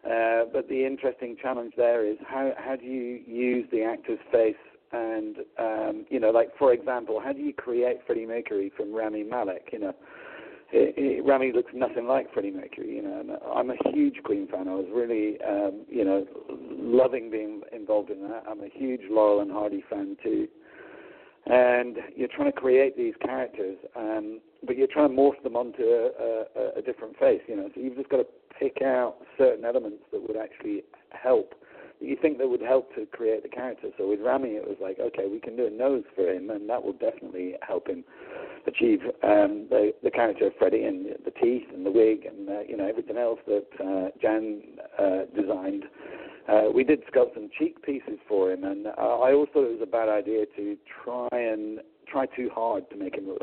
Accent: British